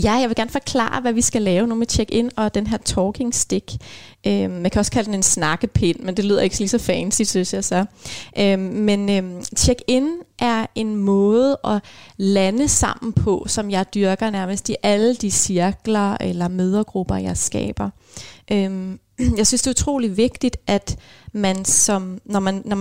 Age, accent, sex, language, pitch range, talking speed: 30-49, native, female, Danish, 190-230 Hz, 185 wpm